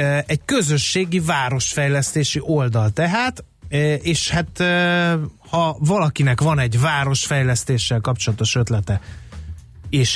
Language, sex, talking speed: Hungarian, male, 90 wpm